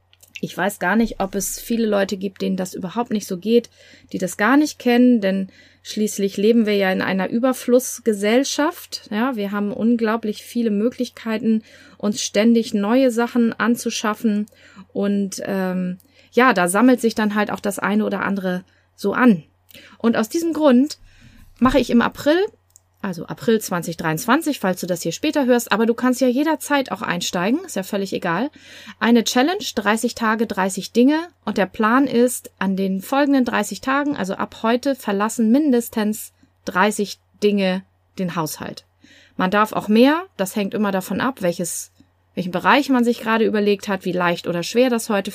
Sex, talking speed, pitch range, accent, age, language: female, 170 wpm, 195-245 Hz, German, 30-49, German